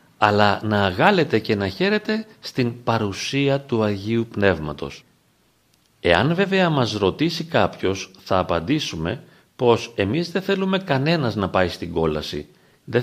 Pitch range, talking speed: 95-155 Hz, 130 wpm